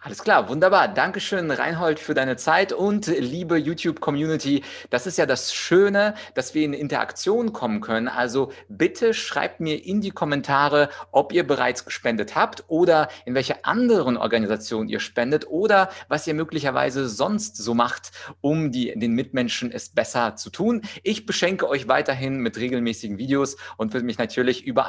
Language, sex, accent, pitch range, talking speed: German, male, German, 115-155 Hz, 160 wpm